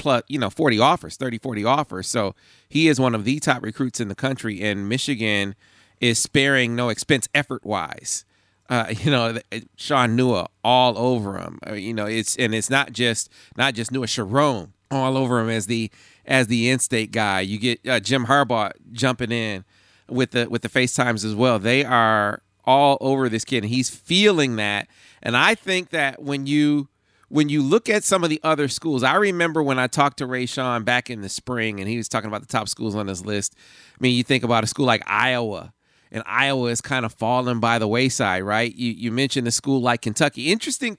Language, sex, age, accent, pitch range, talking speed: English, male, 40-59, American, 110-140 Hz, 210 wpm